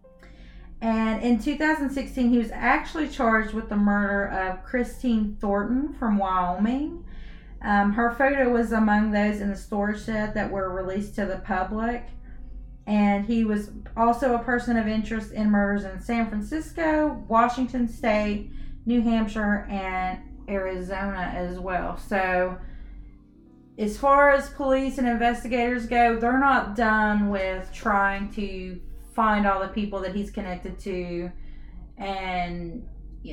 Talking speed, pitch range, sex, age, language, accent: 135 wpm, 190-235 Hz, female, 30-49, English, American